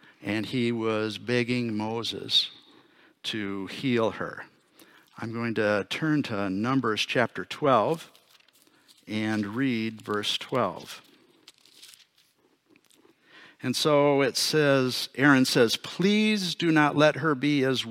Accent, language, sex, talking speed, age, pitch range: American, English, male, 110 wpm, 60-79, 105-135 Hz